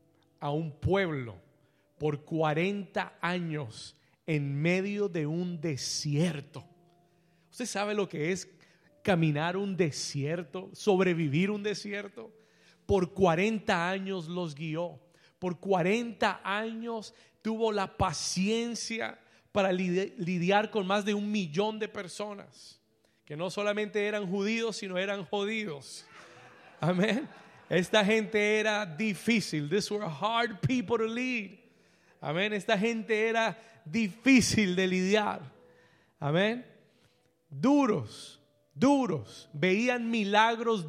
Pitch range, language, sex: 165-220 Hz, Spanish, male